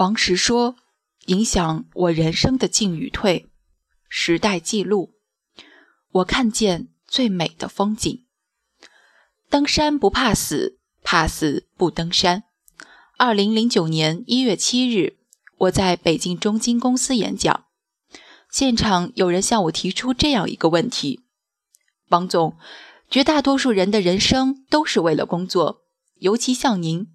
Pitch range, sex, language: 185-260 Hz, female, Chinese